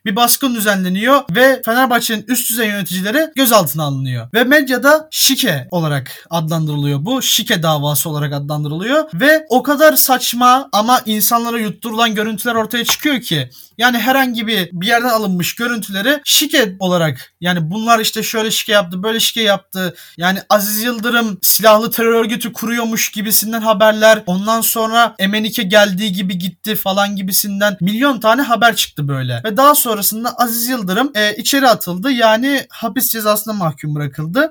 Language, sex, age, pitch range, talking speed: Turkish, male, 30-49, 200-250 Hz, 145 wpm